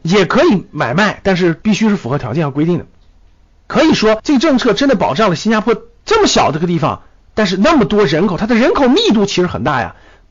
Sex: male